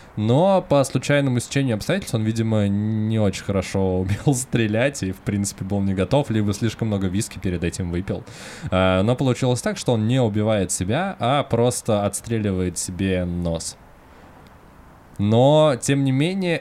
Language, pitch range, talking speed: Russian, 85-110 Hz, 150 wpm